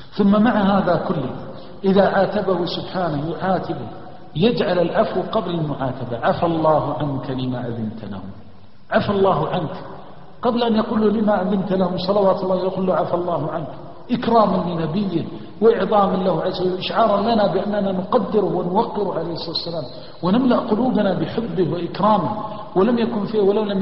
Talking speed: 140 wpm